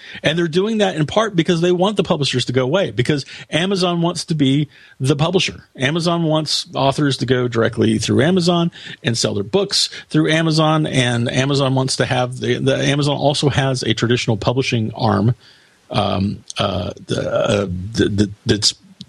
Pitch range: 115-155 Hz